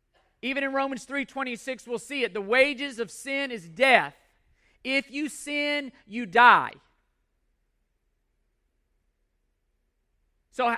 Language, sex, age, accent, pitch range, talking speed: English, male, 40-59, American, 185-265 Hz, 110 wpm